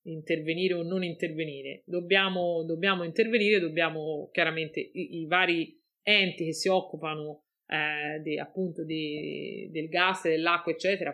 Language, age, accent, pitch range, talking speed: Italian, 30-49, native, 160-190 Hz, 135 wpm